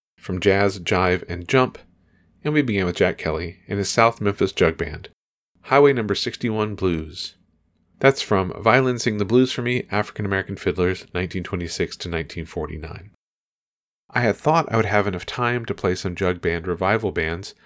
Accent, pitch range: American, 90-125 Hz